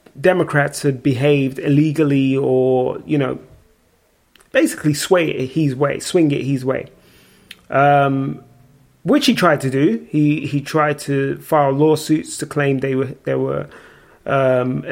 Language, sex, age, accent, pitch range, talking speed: English, male, 30-49, British, 135-160 Hz, 140 wpm